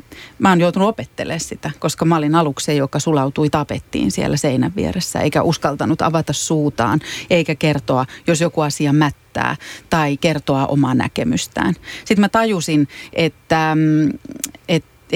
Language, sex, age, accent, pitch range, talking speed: Finnish, female, 30-49, native, 150-180 Hz, 140 wpm